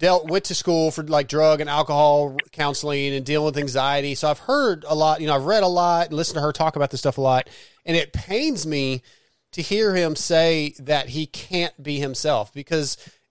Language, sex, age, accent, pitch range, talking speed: English, male, 30-49, American, 135-160 Hz, 215 wpm